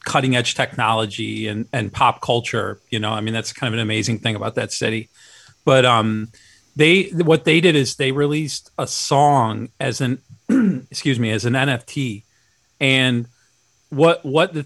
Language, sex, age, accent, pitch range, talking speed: English, male, 40-59, American, 120-145 Hz, 170 wpm